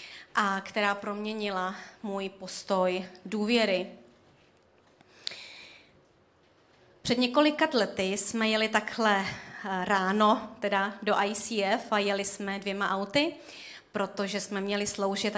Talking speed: 100 wpm